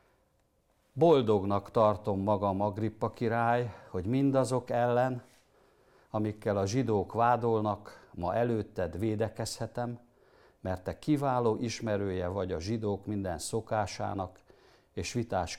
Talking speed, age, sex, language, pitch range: 100 wpm, 60-79, male, Hungarian, 95-120 Hz